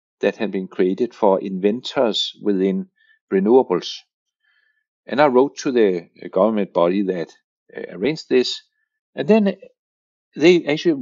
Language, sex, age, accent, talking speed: English, male, 60-79, Danish, 120 wpm